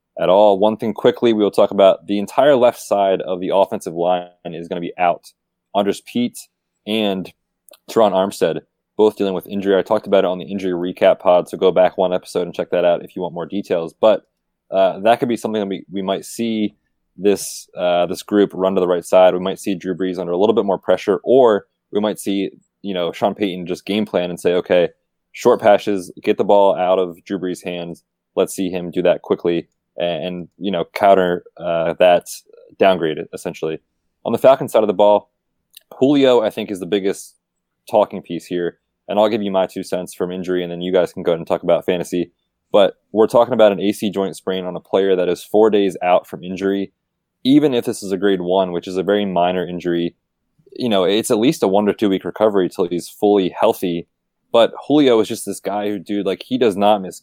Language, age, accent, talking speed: English, 20-39, American, 230 wpm